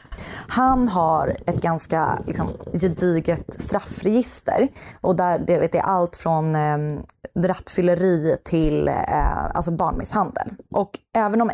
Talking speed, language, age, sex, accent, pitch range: 120 wpm, Swedish, 20-39, female, native, 160-200 Hz